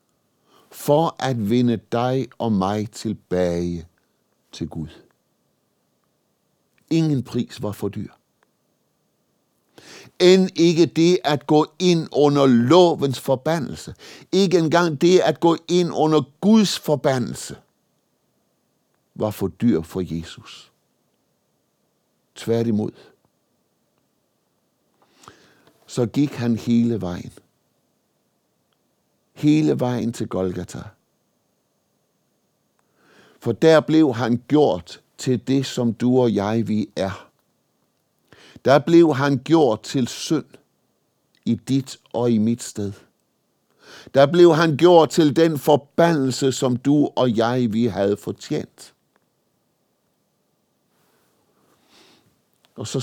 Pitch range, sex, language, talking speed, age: 110-155 Hz, male, Danish, 100 wpm, 60-79